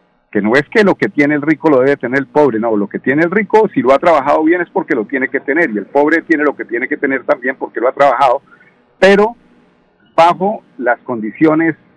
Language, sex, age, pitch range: Spanish, male, 50-69, 110-150 Hz